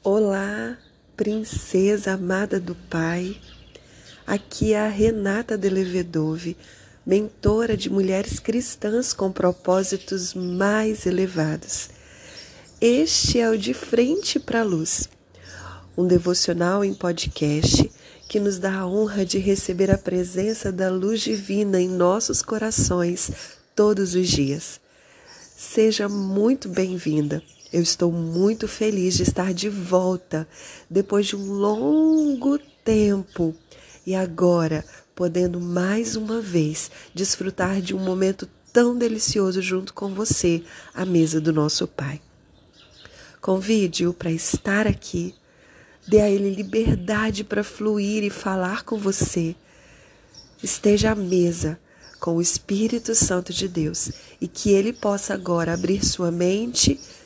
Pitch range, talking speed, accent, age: 175-210 Hz, 120 wpm, Brazilian, 30-49